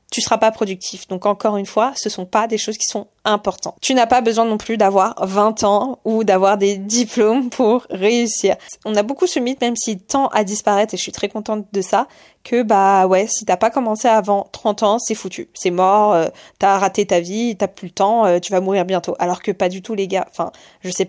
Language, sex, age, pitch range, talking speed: French, female, 20-39, 190-220 Hz, 245 wpm